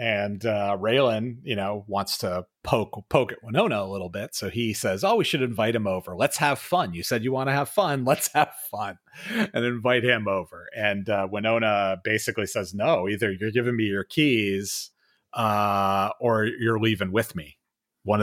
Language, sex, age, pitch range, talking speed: English, male, 30-49, 95-120 Hz, 195 wpm